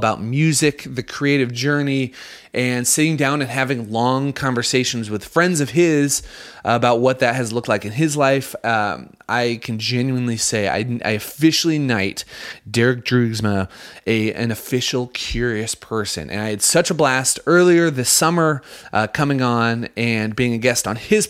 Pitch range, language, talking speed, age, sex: 120-145 Hz, English, 165 wpm, 30-49, male